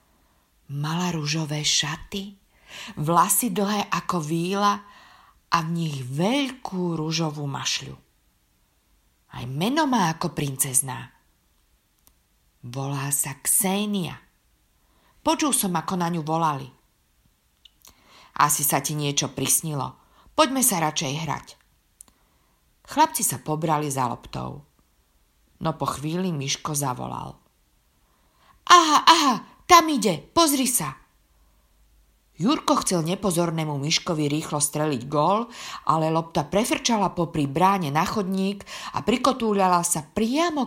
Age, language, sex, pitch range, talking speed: 50-69, Slovak, female, 140-195 Hz, 105 wpm